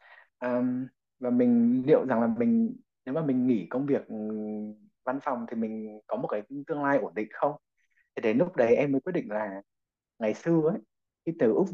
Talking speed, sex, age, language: 205 wpm, male, 20-39, Vietnamese